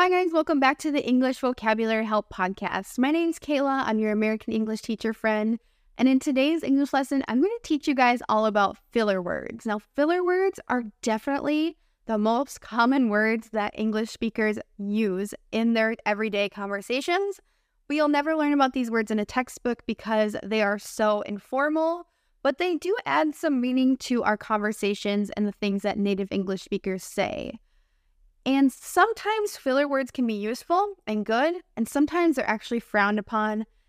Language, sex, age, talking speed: English, female, 10-29, 175 wpm